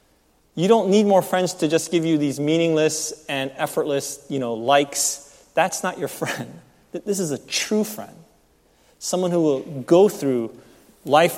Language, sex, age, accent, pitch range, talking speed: English, male, 30-49, American, 130-175 Hz, 165 wpm